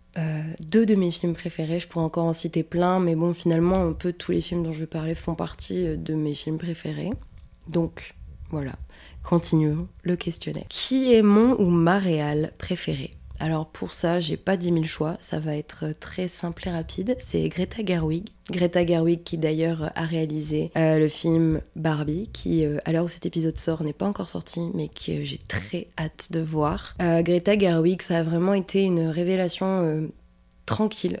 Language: French